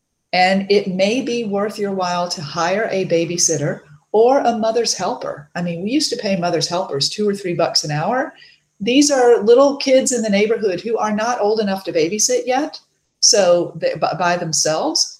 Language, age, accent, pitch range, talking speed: English, 40-59, American, 175-230 Hz, 185 wpm